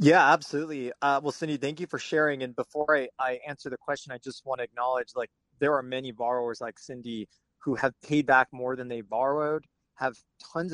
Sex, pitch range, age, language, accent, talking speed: male, 125-145 Hz, 30-49, English, American, 210 wpm